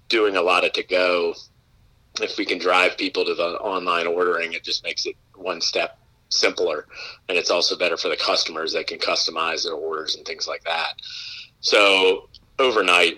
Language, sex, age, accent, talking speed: English, male, 30-49, American, 180 wpm